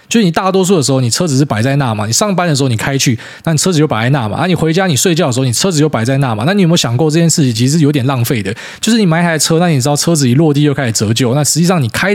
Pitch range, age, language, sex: 120-165 Hz, 20-39, Chinese, male